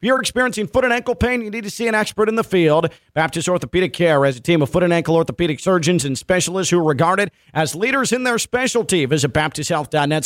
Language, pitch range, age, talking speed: English, 145-185 Hz, 40-59, 235 wpm